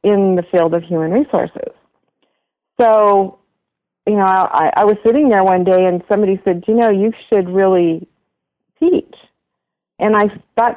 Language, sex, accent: English, female, American